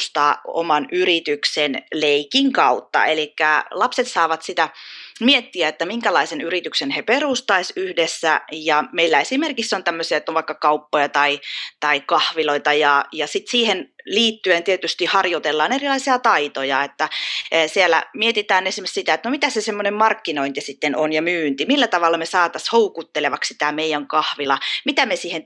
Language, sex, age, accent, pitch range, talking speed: Finnish, female, 20-39, native, 160-220 Hz, 150 wpm